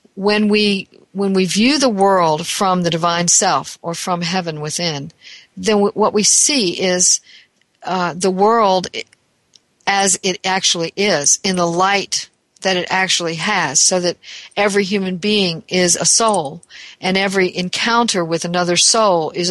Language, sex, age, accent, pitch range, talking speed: English, female, 50-69, American, 170-210 Hz, 150 wpm